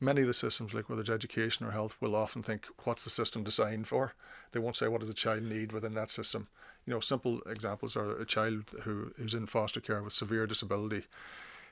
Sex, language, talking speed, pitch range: male, English, 225 wpm, 105-115 Hz